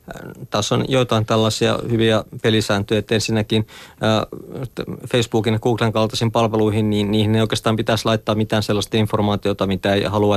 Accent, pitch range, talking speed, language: native, 100-110 Hz, 145 wpm, Finnish